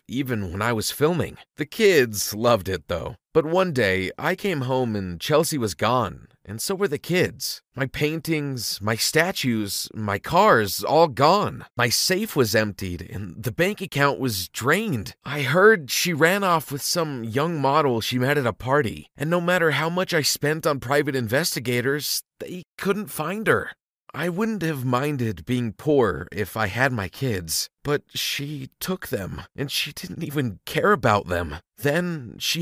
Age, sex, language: 40-59, male, English